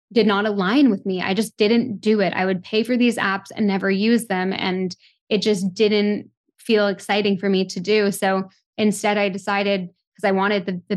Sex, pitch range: female, 190-220 Hz